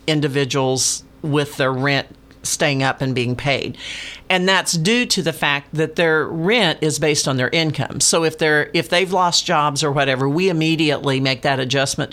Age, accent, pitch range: 50-69, American, 135-175 Hz